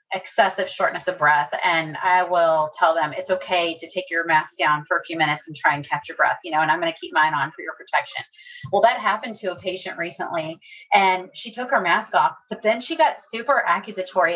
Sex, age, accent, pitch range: female, 30-49, American, 175-225 Hz